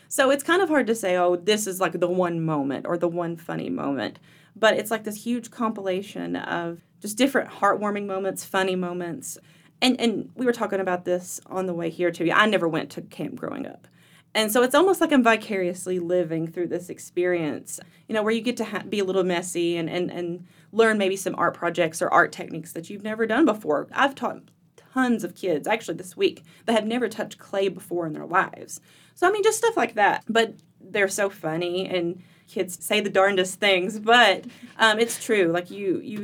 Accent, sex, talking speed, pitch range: American, female, 215 wpm, 170-220 Hz